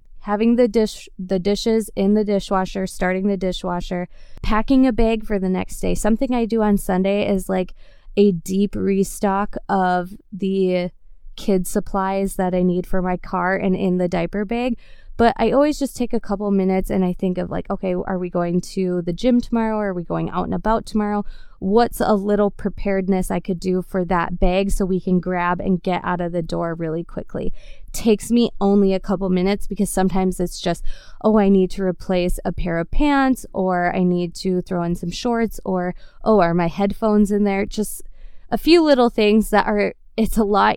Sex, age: female, 20-39